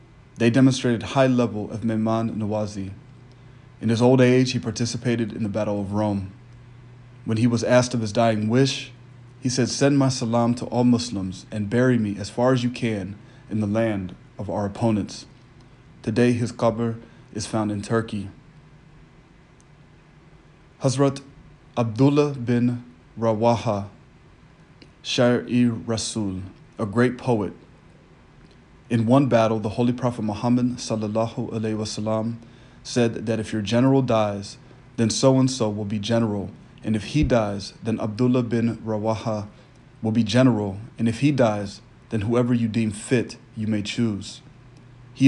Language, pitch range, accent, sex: English, 110-125 Hz, American, male